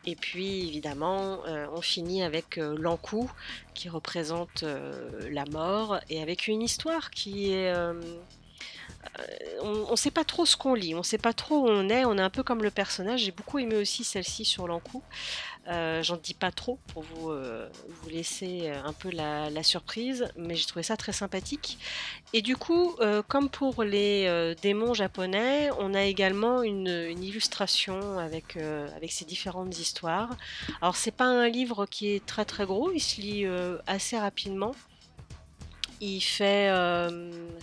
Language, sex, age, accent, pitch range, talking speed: French, female, 30-49, French, 170-220 Hz, 180 wpm